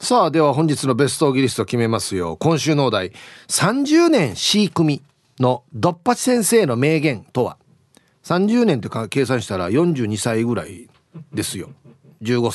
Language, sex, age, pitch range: Japanese, male, 40-59, 125-205 Hz